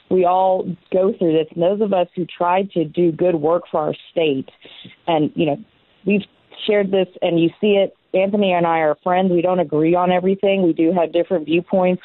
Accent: American